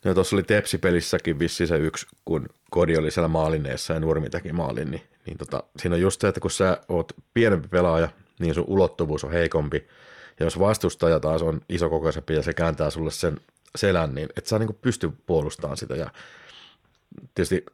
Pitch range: 80-95 Hz